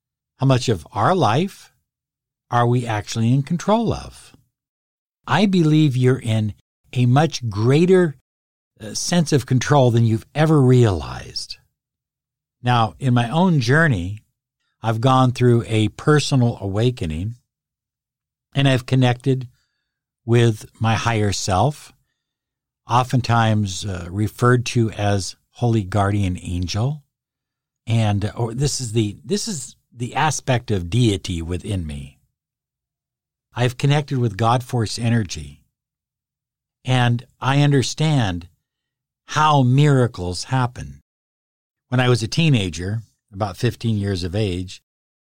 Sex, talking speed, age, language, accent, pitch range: male, 115 wpm, 60-79, English, American, 105-140 Hz